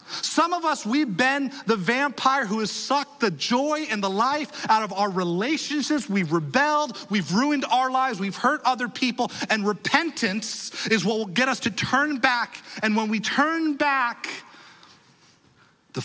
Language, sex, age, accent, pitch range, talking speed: English, male, 40-59, American, 185-295 Hz, 170 wpm